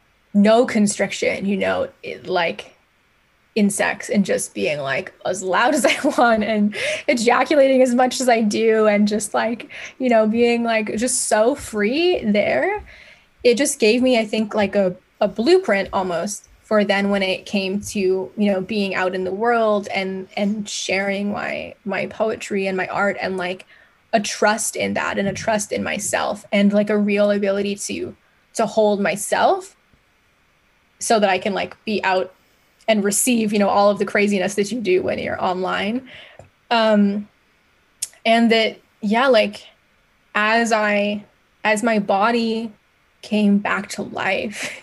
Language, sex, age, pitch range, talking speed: English, female, 10-29, 200-225 Hz, 165 wpm